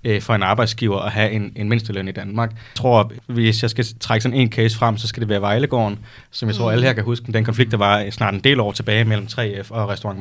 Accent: native